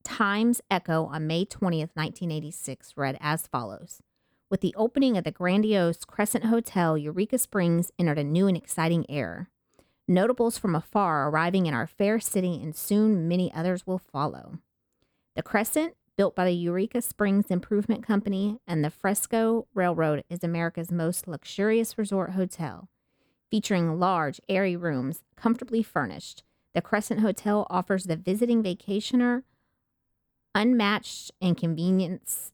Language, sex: English, female